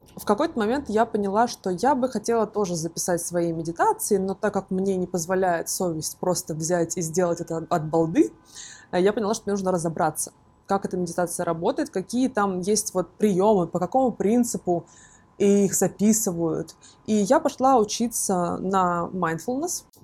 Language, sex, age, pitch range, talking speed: Russian, female, 20-39, 170-210 Hz, 155 wpm